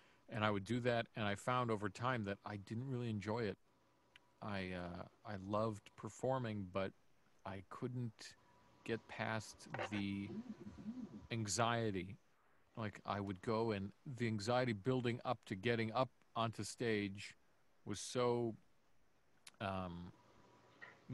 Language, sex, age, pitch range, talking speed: English, male, 50-69, 100-120 Hz, 130 wpm